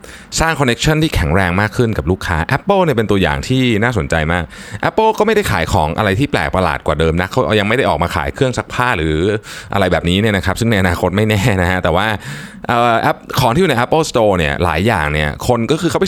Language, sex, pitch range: Thai, male, 85-120 Hz